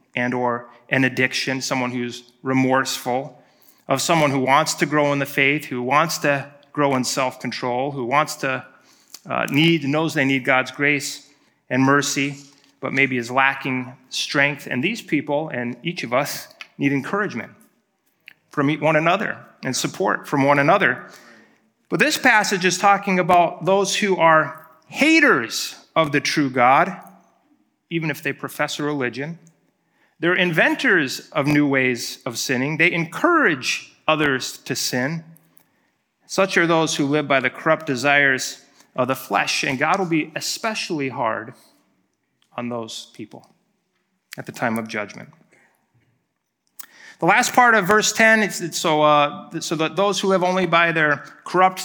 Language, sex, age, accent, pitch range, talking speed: English, male, 30-49, American, 135-185 Hz, 155 wpm